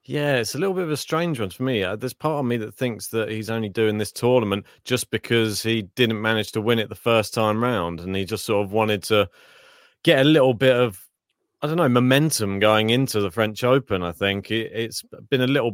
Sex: male